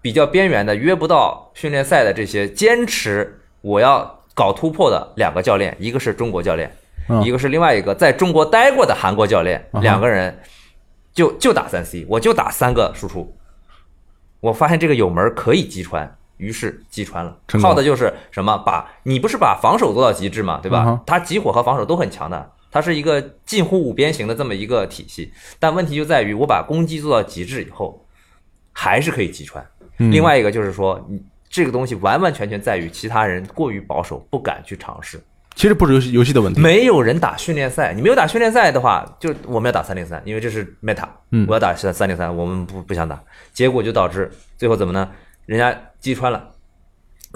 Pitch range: 95-160 Hz